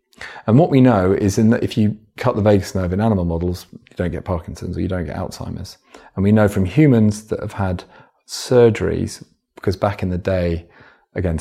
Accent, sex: British, male